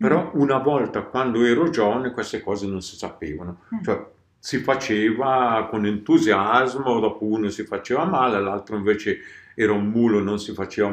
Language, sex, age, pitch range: Italian, male, 50-69, 105-135 Hz